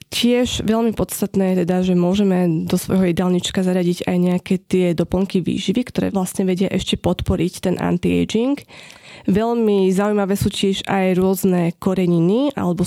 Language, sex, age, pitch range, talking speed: Slovak, female, 20-39, 180-200 Hz, 145 wpm